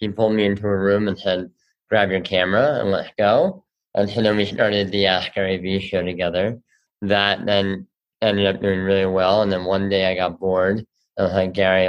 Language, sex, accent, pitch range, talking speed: English, male, American, 95-110 Hz, 215 wpm